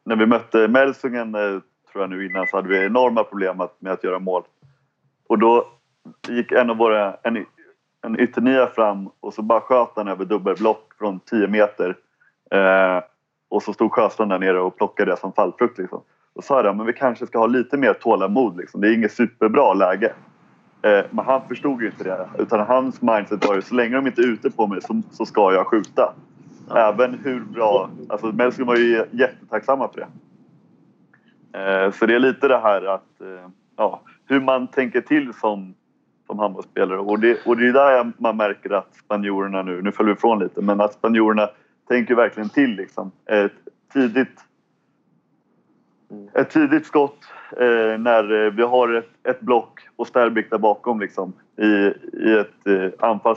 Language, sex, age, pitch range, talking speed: English, male, 30-49, 100-125 Hz, 180 wpm